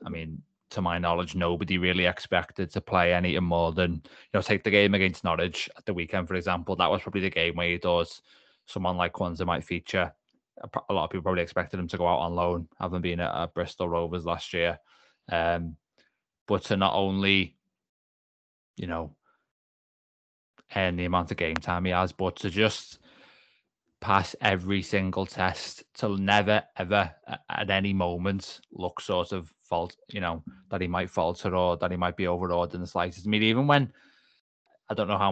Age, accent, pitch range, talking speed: 20-39, British, 90-100 Hz, 190 wpm